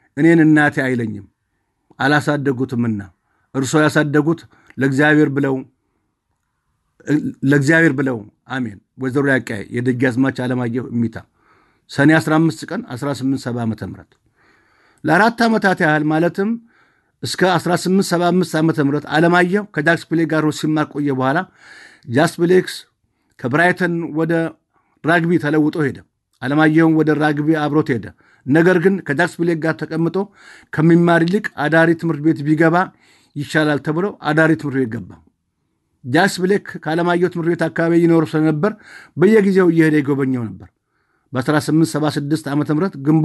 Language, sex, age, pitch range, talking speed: English, male, 50-69, 135-165 Hz, 55 wpm